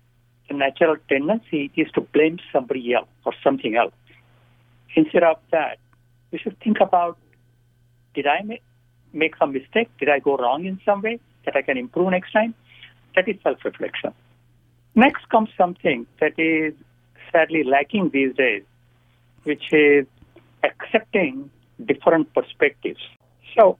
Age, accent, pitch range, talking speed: 60-79, Indian, 120-180 Hz, 135 wpm